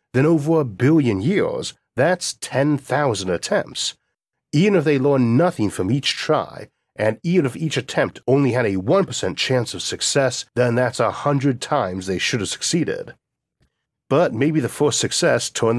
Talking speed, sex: 155 wpm, male